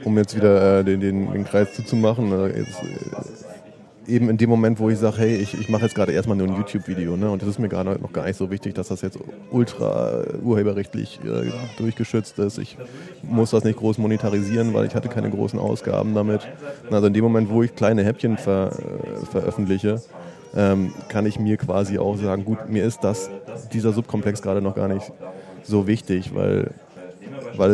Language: German